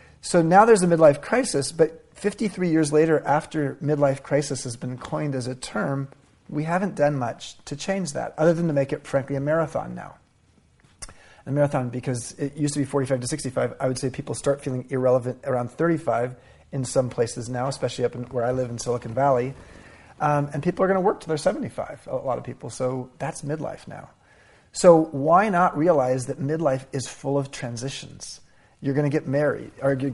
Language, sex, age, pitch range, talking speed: English, male, 30-49, 130-155 Hz, 200 wpm